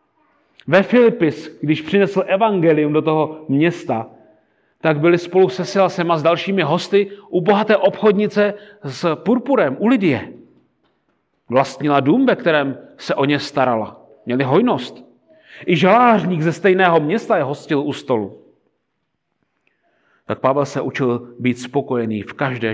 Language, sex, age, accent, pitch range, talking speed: Czech, male, 40-59, native, 150-225 Hz, 130 wpm